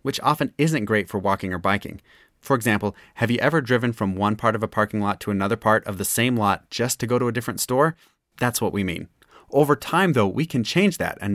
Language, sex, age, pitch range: English, male, 30-49, 105-135 Hz